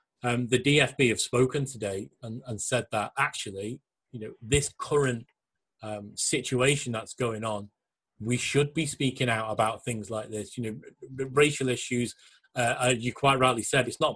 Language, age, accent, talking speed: English, 30-49, British, 175 wpm